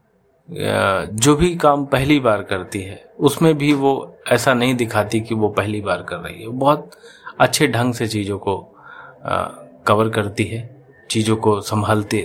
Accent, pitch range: native, 105-125 Hz